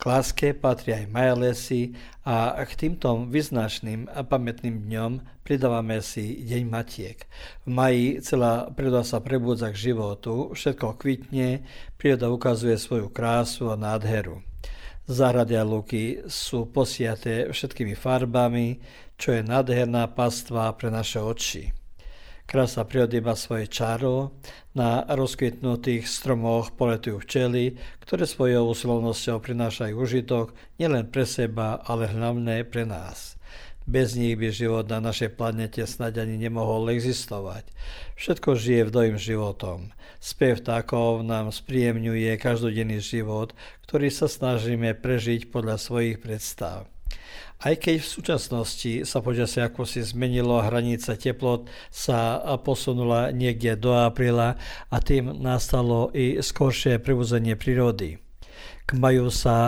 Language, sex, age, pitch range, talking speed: Croatian, male, 50-69, 115-125 Hz, 120 wpm